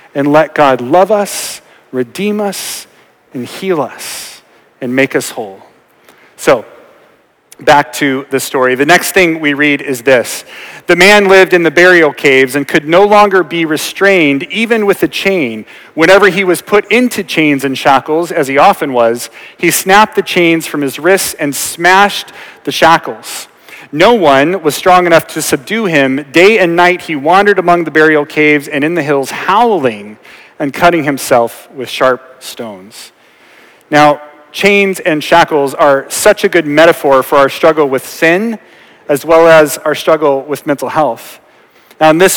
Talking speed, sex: 170 wpm, male